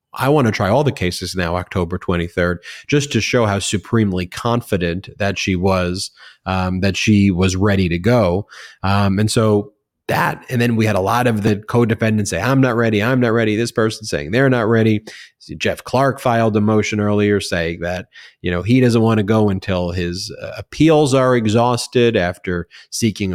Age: 30-49